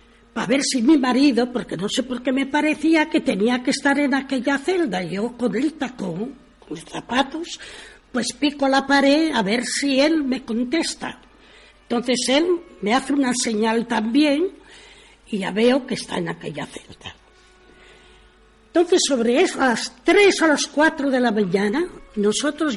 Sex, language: female, Spanish